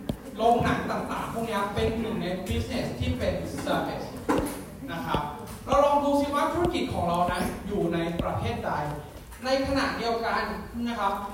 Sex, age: male, 20-39